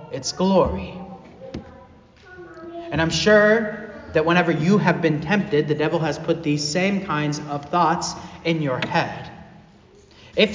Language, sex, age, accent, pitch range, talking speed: English, male, 30-49, American, 145-180 Hz, 135 wpm